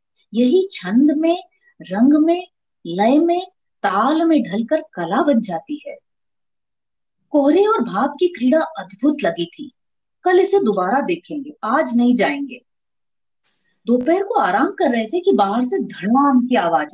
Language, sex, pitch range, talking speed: Hindi, female, 220-315 Hz, 145 wpm